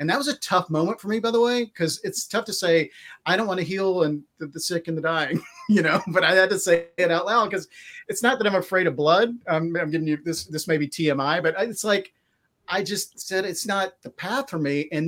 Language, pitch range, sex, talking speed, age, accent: English, 150-190 Hz, male, 270 wpm, 40-59, American